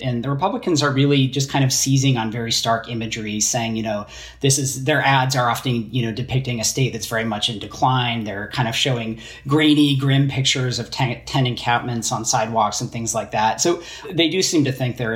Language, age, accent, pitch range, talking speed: English, 40-59, American, 115-135 Hz, 220 wpm